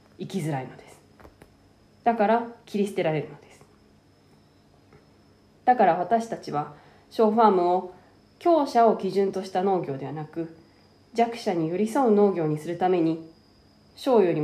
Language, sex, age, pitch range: Japanese, female, 20-39, 170-225 Hz